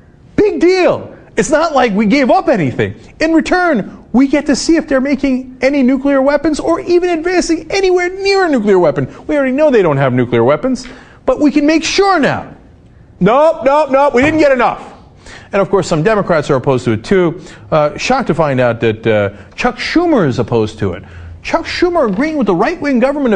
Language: English